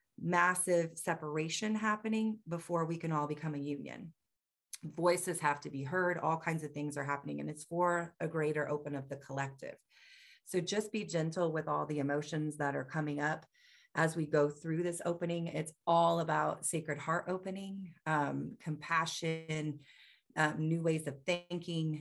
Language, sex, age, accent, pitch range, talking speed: English, female, 30-49, American, 145-170 Hz, 165 wpm